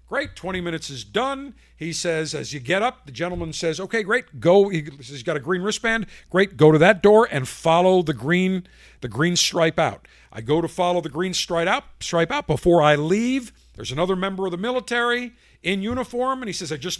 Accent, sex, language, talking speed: American, male, English, 215 wpm